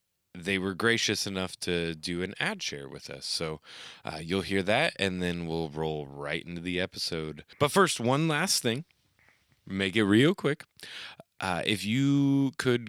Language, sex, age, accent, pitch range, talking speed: English, male, 20-39, American, 85-105 Hz, 170 wpm